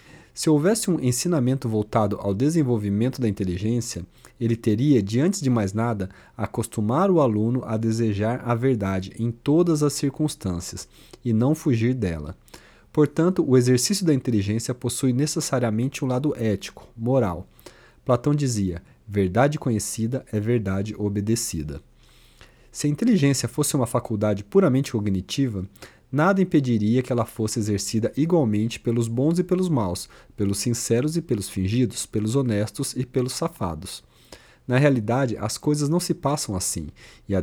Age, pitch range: 40-59, 105-140 Hz